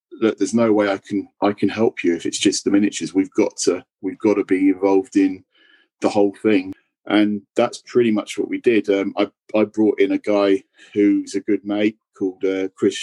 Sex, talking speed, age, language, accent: male, 220 wpm, 40-59, English, British